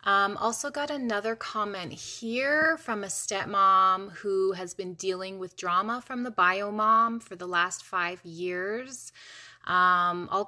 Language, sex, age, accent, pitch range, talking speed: English, female, 20-39, American, 175-225 Hz, 150 wpm